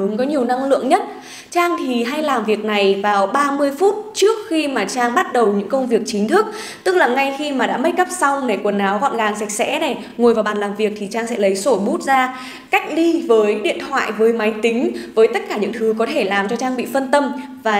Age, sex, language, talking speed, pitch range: 20-39, female, Vietnamese, 265 wpm, 210-280 Hz